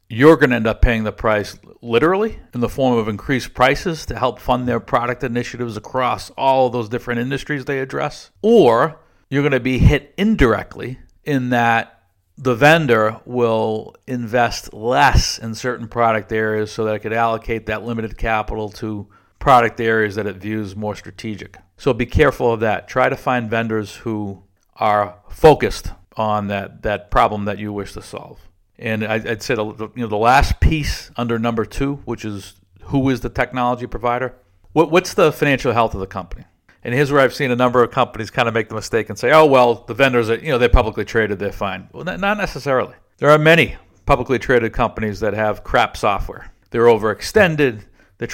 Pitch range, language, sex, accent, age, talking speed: 105-130 Hz, English, male, American, 50-69, 185 wpm